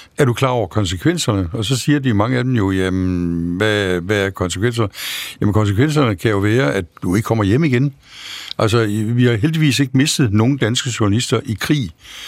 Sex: male